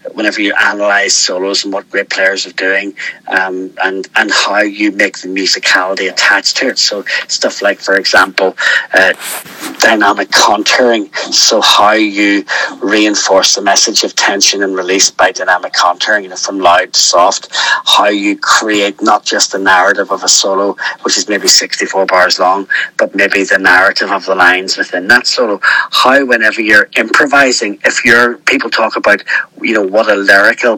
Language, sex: English, male